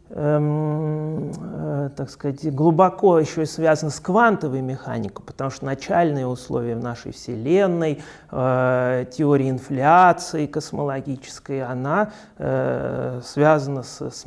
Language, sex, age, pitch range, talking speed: Russian, male, 30-49, 125-155 Hz, 115 wpm